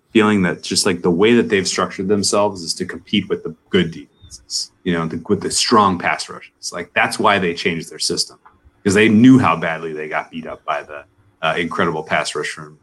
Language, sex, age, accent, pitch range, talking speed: English, male, 30-49, American, 80-105 Hz, 225 wpm